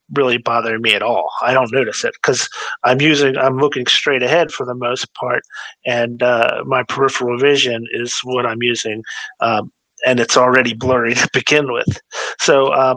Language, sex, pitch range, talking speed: English, male, 125-145 Hz, 180 wpm